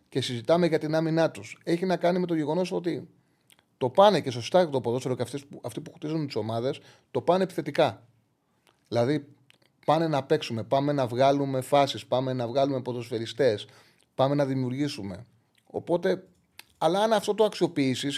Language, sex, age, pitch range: Greek, male, 30-49, 120-170 Hz